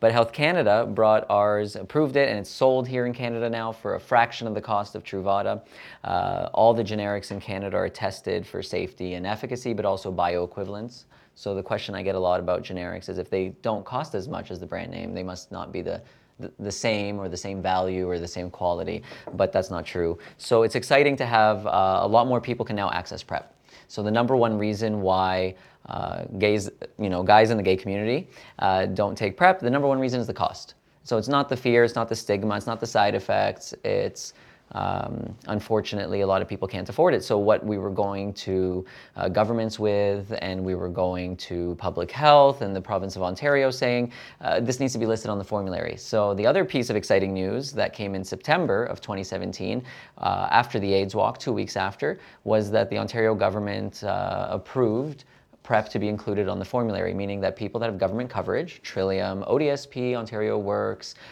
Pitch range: 95-115 Hz